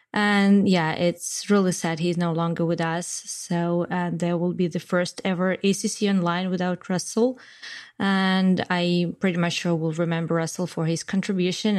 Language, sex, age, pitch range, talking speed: English, female, 20-39, 170-215 Hz, 170 wpm